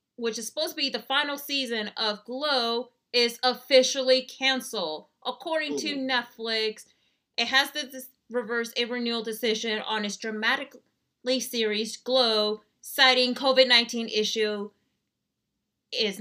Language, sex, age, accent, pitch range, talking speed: English, female, 30-49, American, 220-255 Hz, 120 wpm